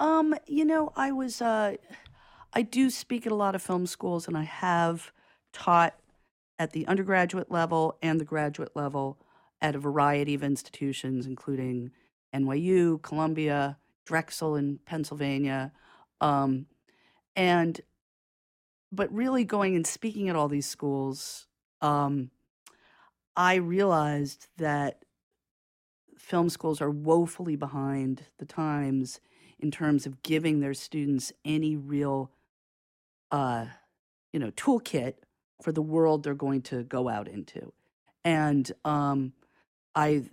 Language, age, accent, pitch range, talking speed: English, 40-59, American, 135-165 Hz, 125 wpm